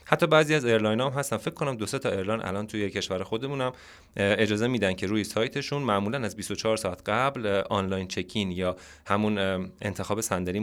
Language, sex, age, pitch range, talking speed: Persian, male, 30-49, 100-125 Hz, 175 wpm